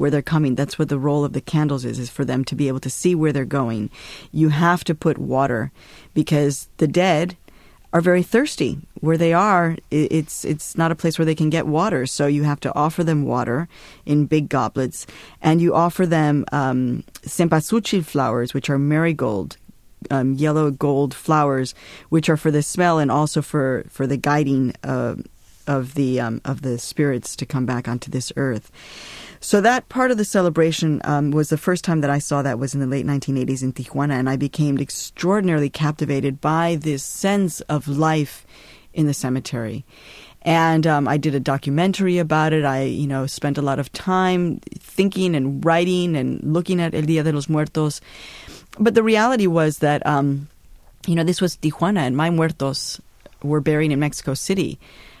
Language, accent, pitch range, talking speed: English, American, 135-165 Hz, 190 wpm